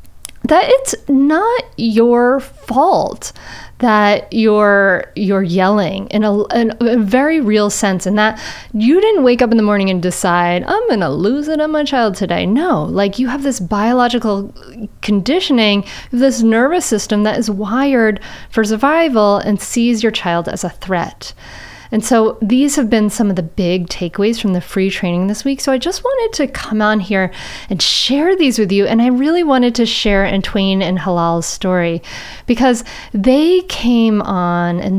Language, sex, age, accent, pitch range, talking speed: English, female, 30-49, American, 195-250 Hz, 175 wpm